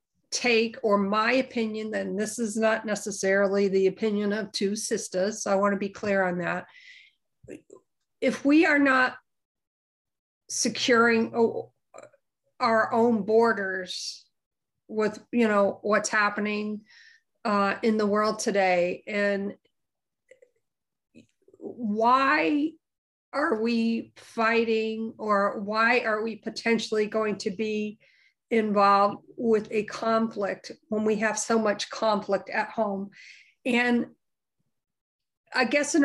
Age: 50-69